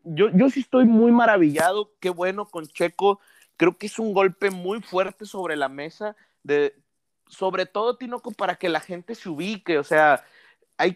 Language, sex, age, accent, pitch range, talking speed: Spanish, male, 30-49, Mexican, 170-220 Hz, 180 wpm